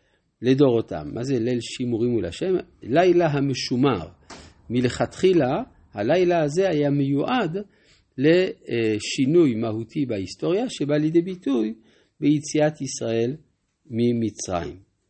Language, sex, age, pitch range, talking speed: Hebrew, male, 50-69, 115-165 Hz, 90 wpm